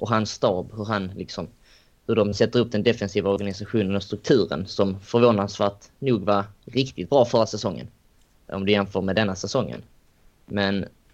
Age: 20-39